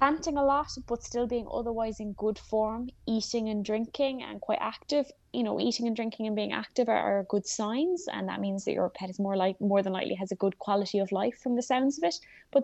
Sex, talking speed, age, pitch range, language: female, 245 wpm, 20-39, 185-235 Hz, English